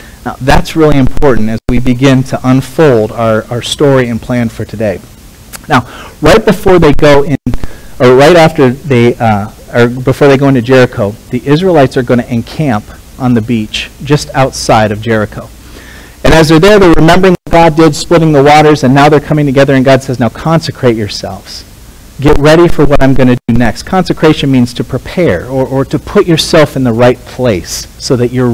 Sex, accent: male, American